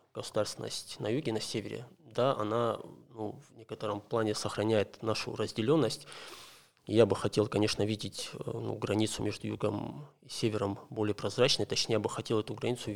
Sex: male